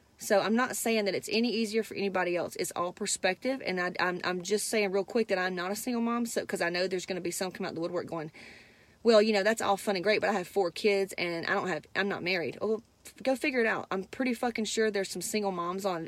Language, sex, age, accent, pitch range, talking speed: English, female, 30-49, American, 175-205 Hz, 295 wpm